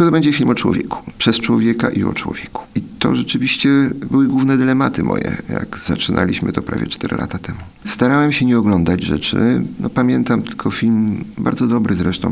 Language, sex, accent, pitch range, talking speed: Polish, male, native, 95-120 Hz, 175 wpm